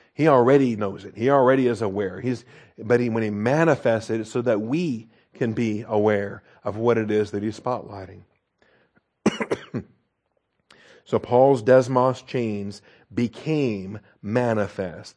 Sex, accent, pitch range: male, American, 105-130 Hz